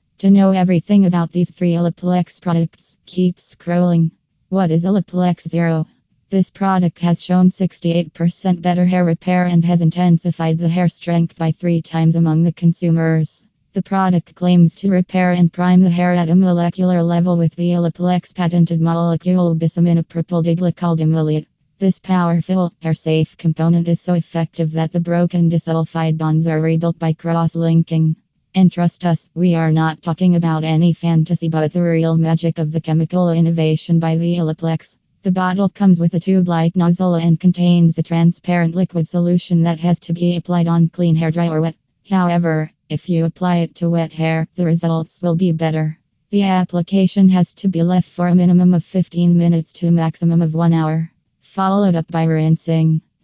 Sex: female